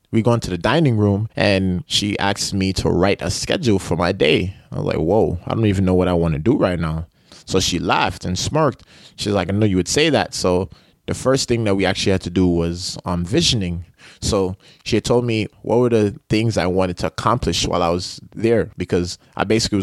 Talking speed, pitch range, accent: 240 wpm, 95-115 Hz, American